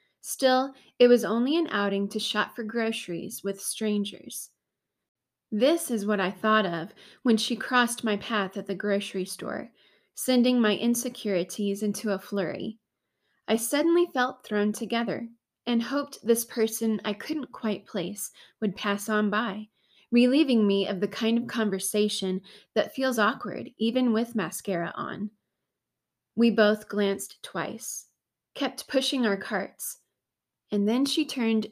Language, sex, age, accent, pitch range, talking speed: English, female, 20-39, American, 205-245 Hz, 145 wpm